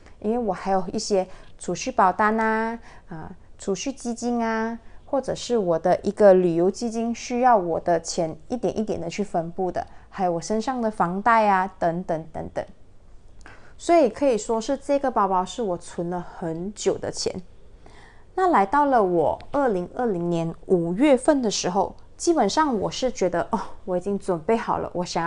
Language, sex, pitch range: Chinese, female, 180-230 Hz